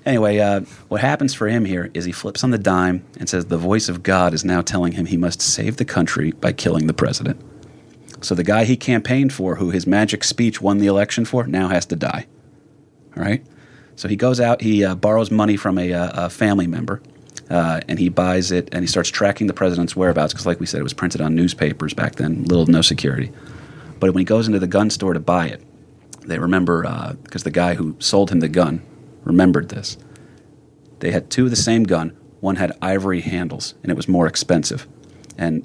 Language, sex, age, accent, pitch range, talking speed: English, male, 30-49, American, 90-110 Hz, 225 wpm